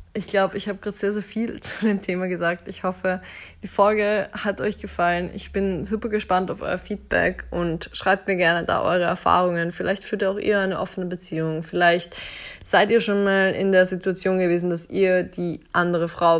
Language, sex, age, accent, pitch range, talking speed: German, female, 20-39, German, 170-195 Hz, 200 wpm